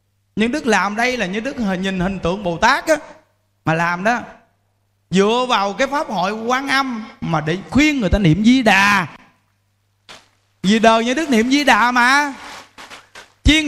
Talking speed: 180 wpm